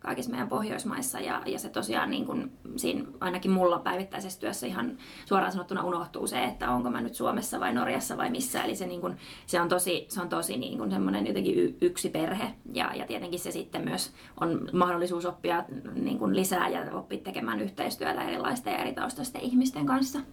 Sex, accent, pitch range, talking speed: female, native, 170-240 Hz, 190 wpm